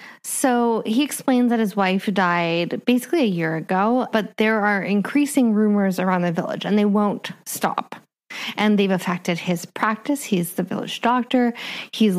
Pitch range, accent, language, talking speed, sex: 190-240 Hz, American, English, 160 wpm, female